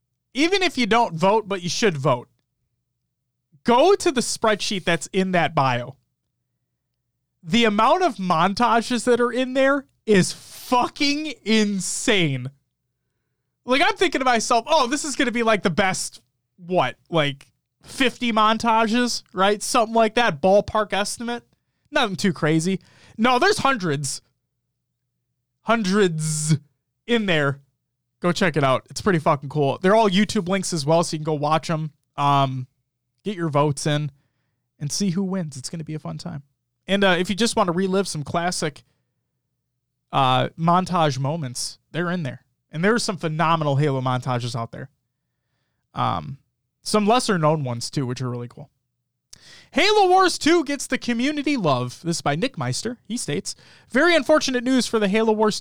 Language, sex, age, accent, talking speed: English, male, 20-39, American, 165 wpm